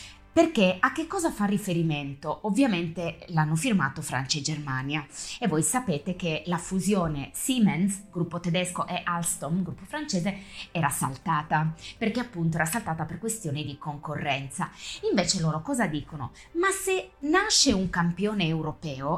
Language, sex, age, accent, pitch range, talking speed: Italian, female, 20-39, native, 165-205 Hz, 140 wpm